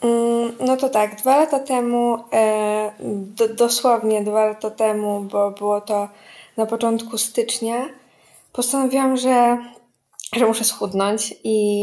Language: Polish